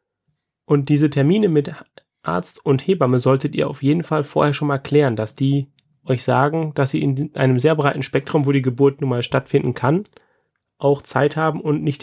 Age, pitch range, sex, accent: 30-49, 135-155 Hz, male, German